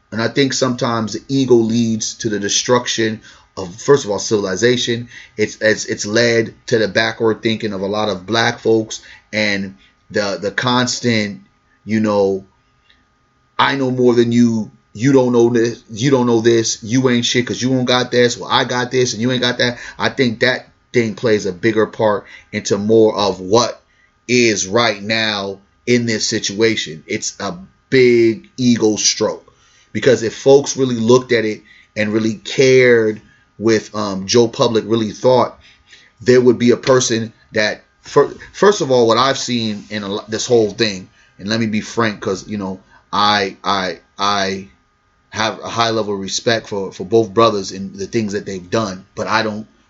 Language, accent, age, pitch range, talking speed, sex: English, American, 30-49, 105-120 Hz, 185 wpm, male